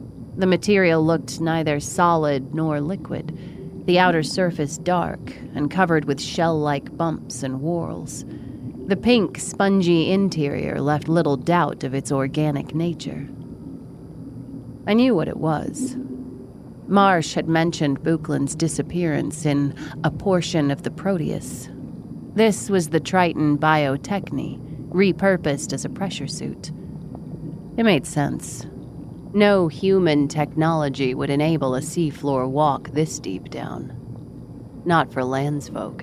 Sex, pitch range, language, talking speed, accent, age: female, 145-175 Hz, English, 120 wpm, American, 30-49